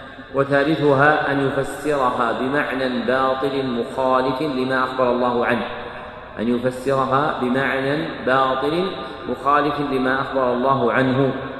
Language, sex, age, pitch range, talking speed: Arabic, male, 40-59, 130-150 Hz, 100 wpm